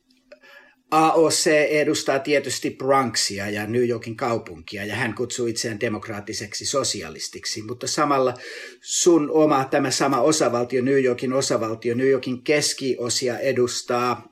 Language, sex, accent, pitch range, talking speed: Finnish, male, native, 115-140 Hz, 115 wpm